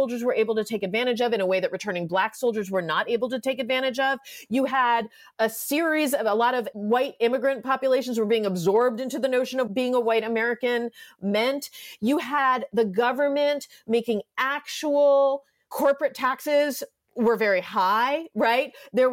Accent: American